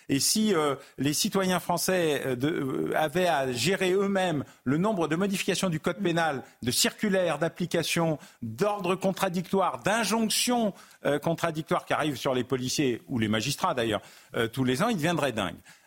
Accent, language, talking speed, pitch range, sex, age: French, French, 155 wpm, 140-210 Hz, male, 50-69